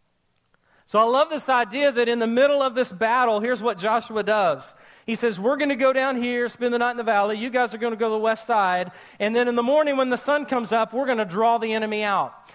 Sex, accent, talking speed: male, American, 275 wpm